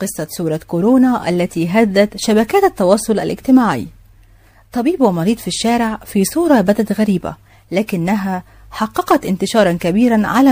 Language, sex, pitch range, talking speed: Arabic, female, 165-230 Hz, 120 wpm